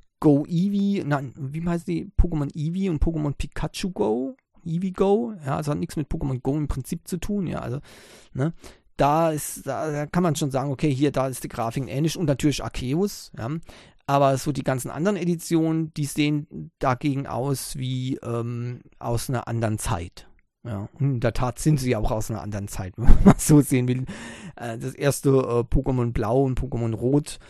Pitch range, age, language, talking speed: 120-155 Hz, 40-59, German, 195 wpm